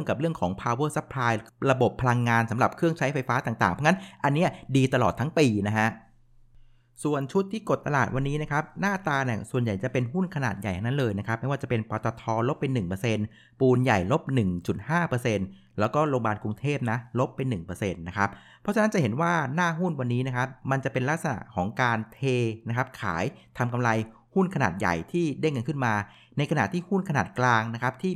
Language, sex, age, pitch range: Thai, male, 60-79, 110-145 Hz